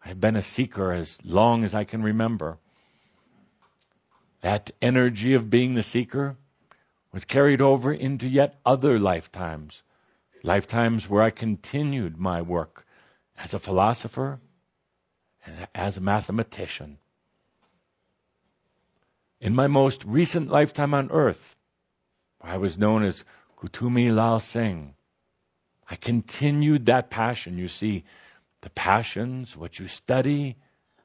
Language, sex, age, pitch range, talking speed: English, male, 60-79, 95-130 Hz, 120 wpm